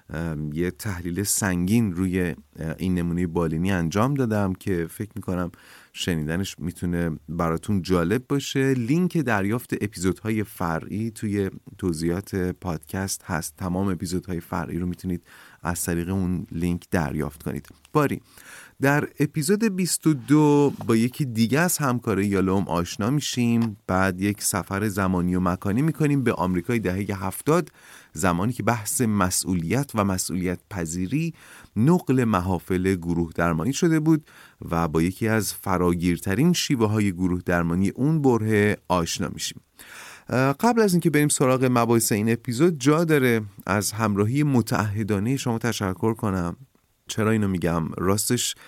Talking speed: 135 wpm